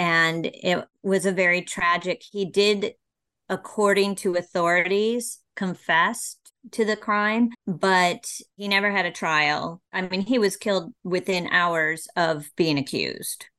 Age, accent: 30-49, American